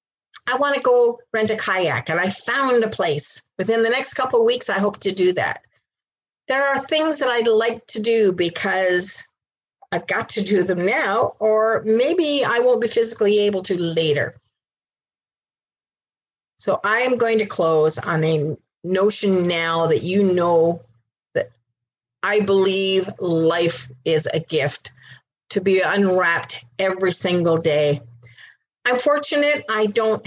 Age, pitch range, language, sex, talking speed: 50-69, 165-225 Hz, English, female, 150 wpm